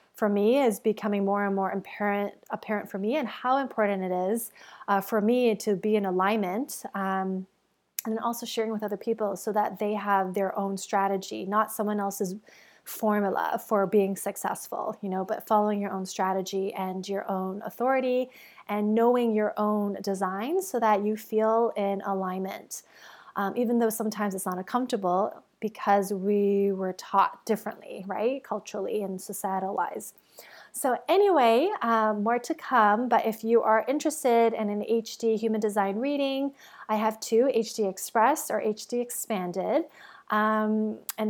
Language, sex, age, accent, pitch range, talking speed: English, female, 20-39, American, 195-225 Hz, 160 wpm